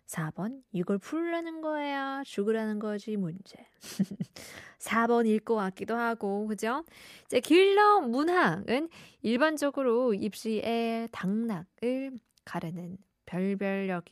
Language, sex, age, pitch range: Korean, female, 20-39, 185-240 Hz